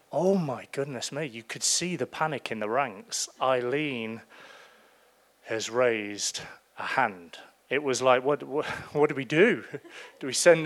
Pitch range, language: 115-155 Hz, English